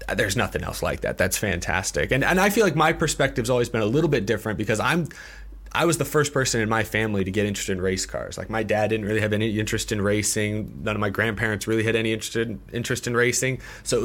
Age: 30-49